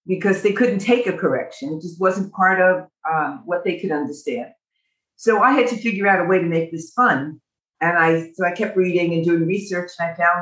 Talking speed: 230 wpm